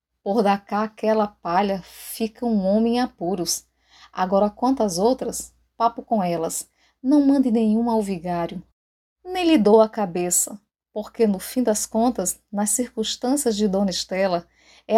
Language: Portuguese